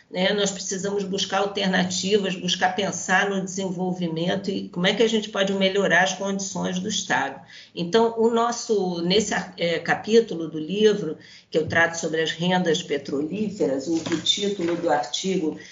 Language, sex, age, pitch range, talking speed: Portuguese, female, 50-69, 175-205 Hz, 155 wpm